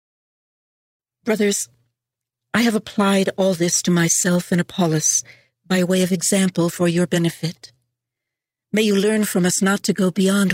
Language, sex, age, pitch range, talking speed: English, female, 60-79, 165-195 Hz, 150 wpm